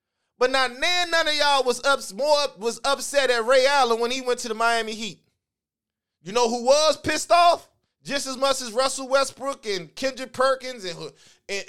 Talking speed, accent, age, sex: 190 wpm, American, 20-39, male